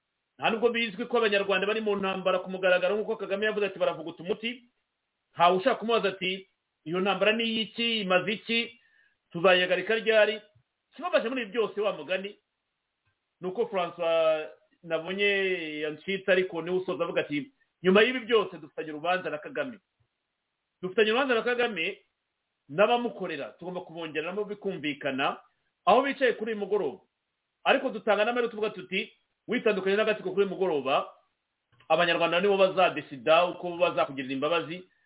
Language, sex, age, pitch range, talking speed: English, male, 40-59, 175-215 Hz, 135 wpm